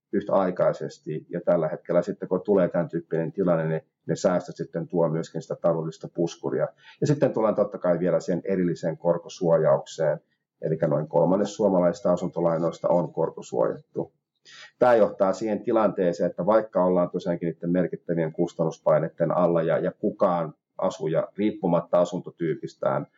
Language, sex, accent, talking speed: Finnish, male, native, 135 wpm